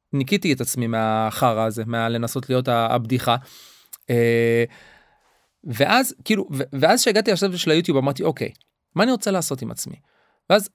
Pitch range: 125-175 Hz